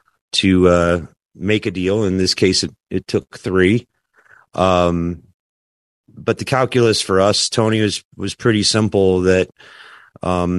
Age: 30-49